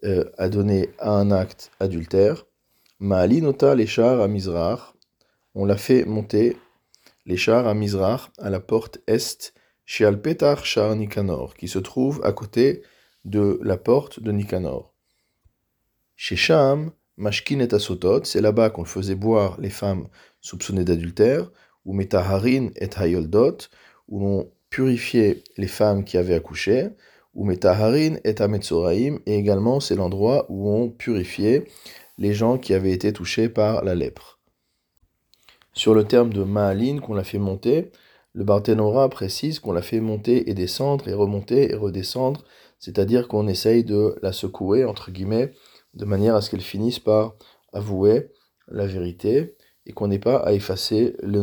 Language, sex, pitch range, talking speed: French, male, 95-115 Hz, 150 wpm